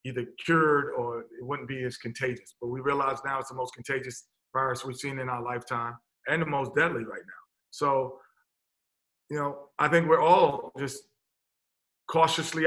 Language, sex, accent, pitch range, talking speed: English, male, American, 125-150 Hz, 175 wpm